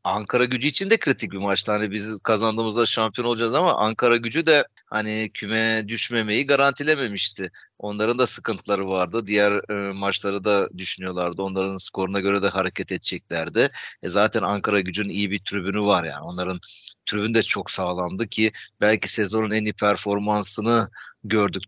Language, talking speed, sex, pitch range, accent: Turkish, 150 wpm, male, 100-115 Hz, native